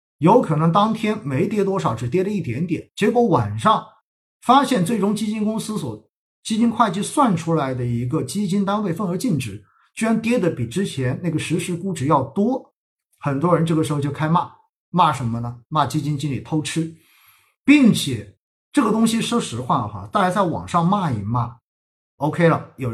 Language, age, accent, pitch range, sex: Chinese, 50-69, native, 125-190 Hz, male